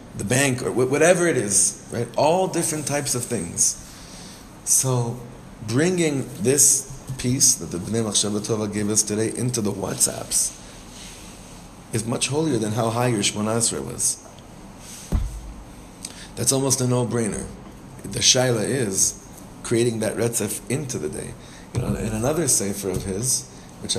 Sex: male